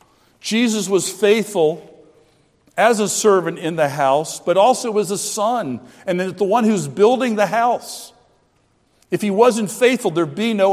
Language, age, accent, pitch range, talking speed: English, 50-69, American, 155-225 Hz, 155 wpm